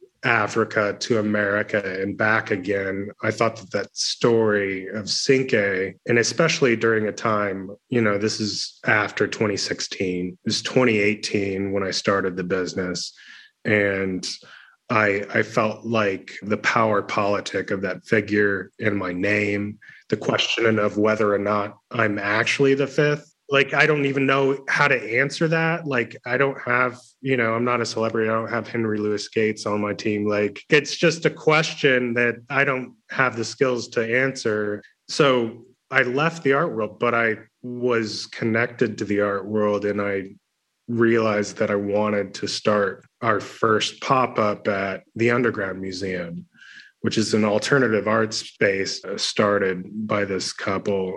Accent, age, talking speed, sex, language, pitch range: American, 30-49, 160 wpm, male, English, 100-120 Hz